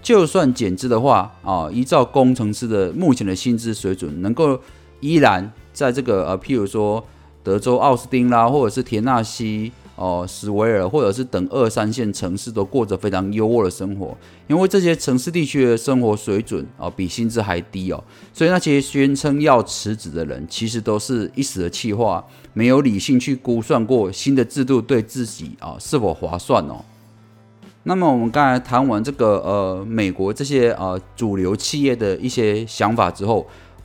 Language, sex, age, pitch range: Chinese, male, 30-49, 95-120 Hz